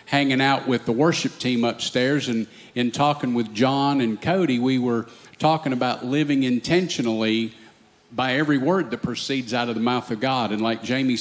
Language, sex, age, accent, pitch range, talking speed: English, male, 50-69, American, 120-150 Hz, 180 wpm